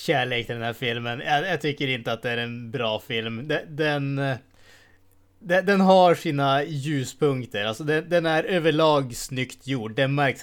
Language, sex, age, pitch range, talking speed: Swedish, male, 20-39, 115-145 Hz, 175 wpm